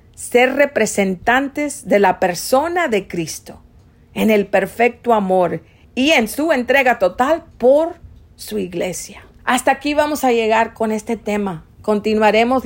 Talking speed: 135 wpm